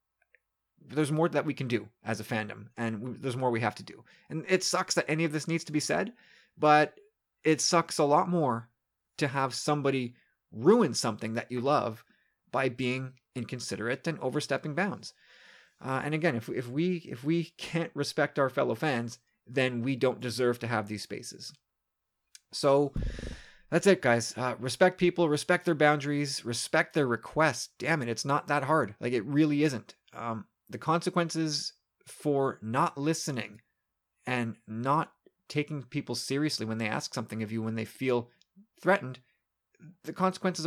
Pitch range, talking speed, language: 120-155 Hz, 170 wpm, English